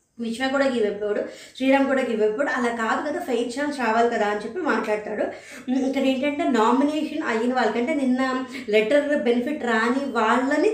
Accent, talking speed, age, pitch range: native, 145 wpm, 20-39, 235-290 Hz